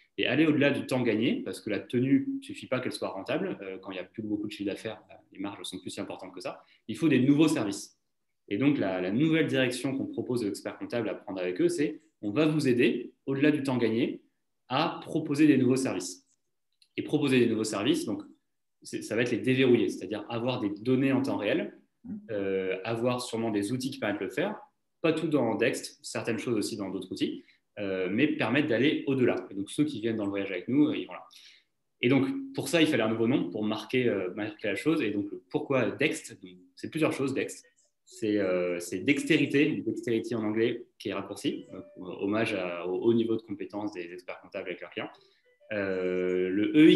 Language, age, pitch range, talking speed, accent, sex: French, 30-49, 105-150 Hz, 225 wpm, French, male